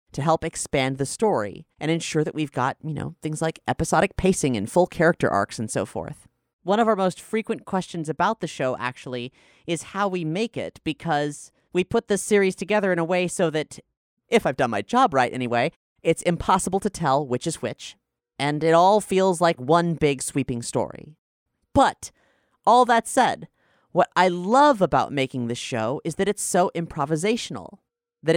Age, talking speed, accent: 30-49, 190 wpm, American